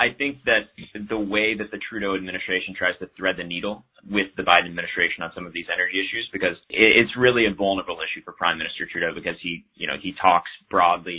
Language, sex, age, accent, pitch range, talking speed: English, male, 30-49, American, 90-100 Hz, 220 wpm